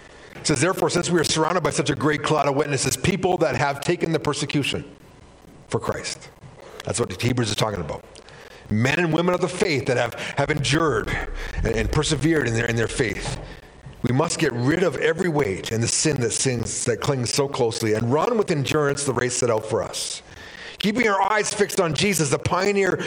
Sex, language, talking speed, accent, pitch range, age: male, English, 205 wpm, American, 110-165 Hz, 50-69